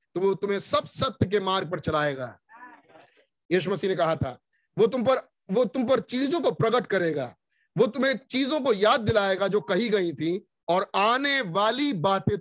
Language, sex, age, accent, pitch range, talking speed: Hindi, male, 50-69, native, 175-270 Hz, 185 wpm